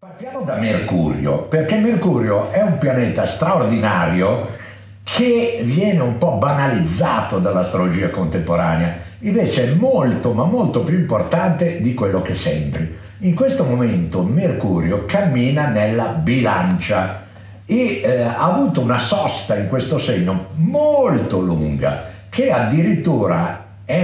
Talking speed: 120 wpm